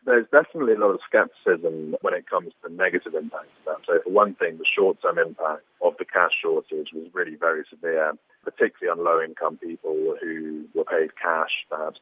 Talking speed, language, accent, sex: 180 wpm, English, British, male